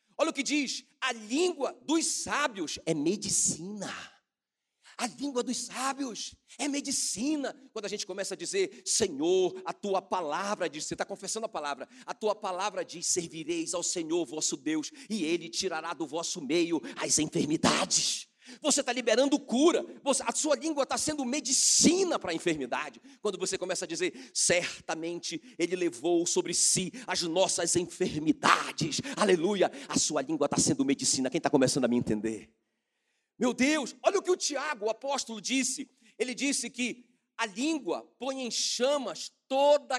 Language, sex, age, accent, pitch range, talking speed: Portuguese, male, 40-59, Brazilian, 190-290 Hz, 160 wpm